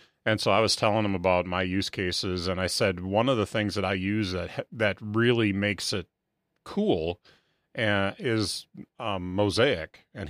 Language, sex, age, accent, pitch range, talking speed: English, male, 30-49, American, 95-120 Hz, 175 wpm